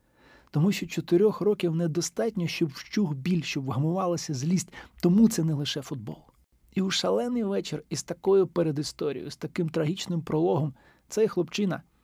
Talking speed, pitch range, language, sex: 140 wpm, 150-190 Hz, Ukrainian, male